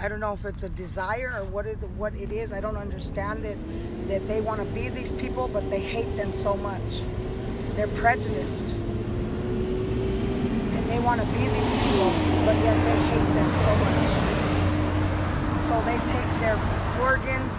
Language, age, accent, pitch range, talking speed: English, 20-39, American, 95-115 Hz, 175 wpm